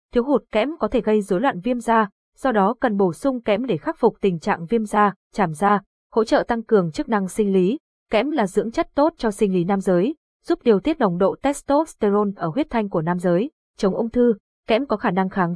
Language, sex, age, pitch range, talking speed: Vietnamese, female, 20-39, 190-240 Hz, 245 wpm